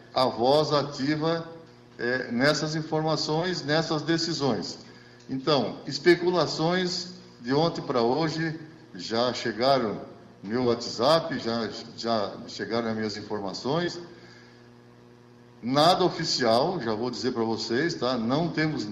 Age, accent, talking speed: 60-79, Brazilian, 110 wpm